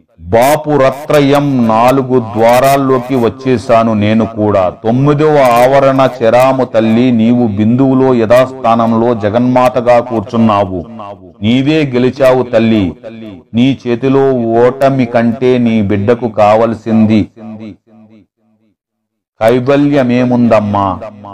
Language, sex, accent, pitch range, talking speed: Telugu, male, native, 110-130 Hz, 65 wpm